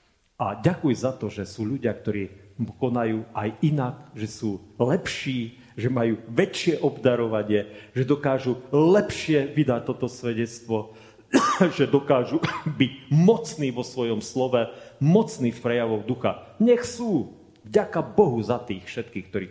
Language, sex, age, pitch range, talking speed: Slovak, male, 40-59, 105-135 Hz, 130 wpm